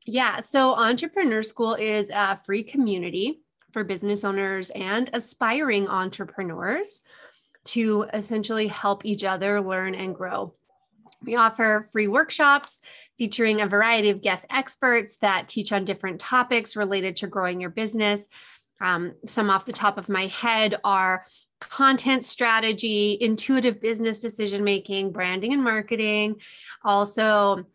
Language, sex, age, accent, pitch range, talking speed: English, female, 30-49, American, 195-230 Hz, 130 wpm